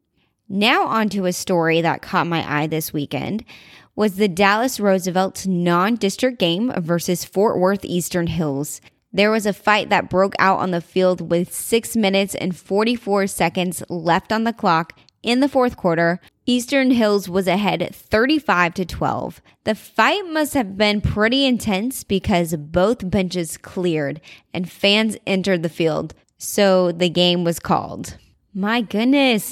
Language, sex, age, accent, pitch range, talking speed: English, female, 20-39, American, 170-215 Hz, 150 wpm